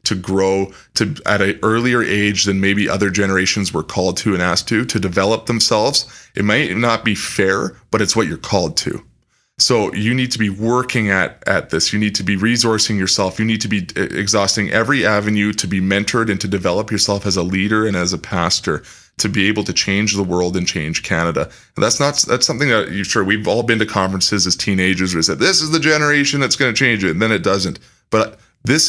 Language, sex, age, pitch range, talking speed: English, male, 20-39, 95-115 Hz, 230 wpm